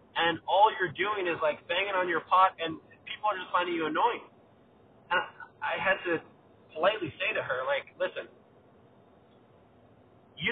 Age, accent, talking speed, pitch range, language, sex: 30-49, American, 160 wpm, 155-195 Hz, English, male